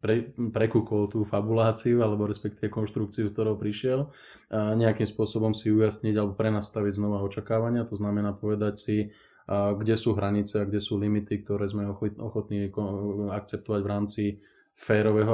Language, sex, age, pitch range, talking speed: Slovak, male, 20-39, 100-110 Hz, 145 wpm